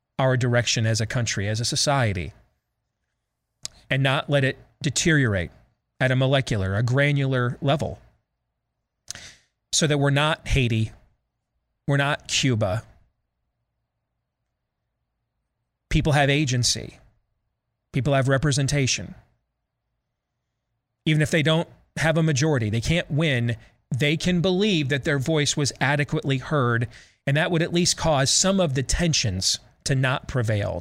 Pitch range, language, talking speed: 120-160 Hz, English, 125 wpm